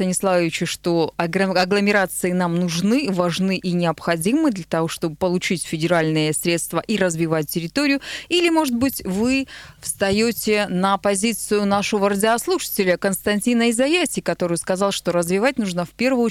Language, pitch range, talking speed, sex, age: Russian, 185-245 Hz, 125 wpm, female, 20-39